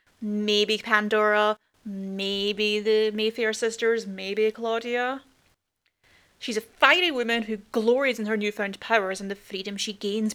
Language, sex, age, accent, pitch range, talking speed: English, female, 30-49, British, 205-235 Hz, 135 wpm